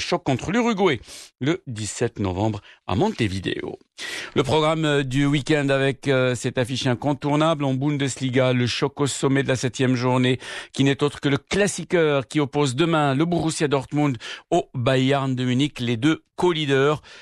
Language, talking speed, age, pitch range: Arabic, 155 wpm, 60-79, 120-150 Hz